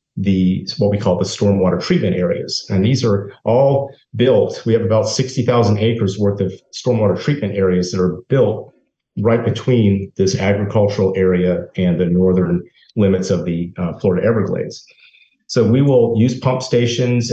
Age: 40-59